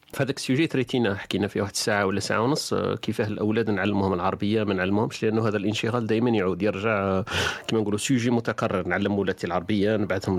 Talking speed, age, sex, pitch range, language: 180 wpm, 40-59, male, 95-120 Hz, Arabic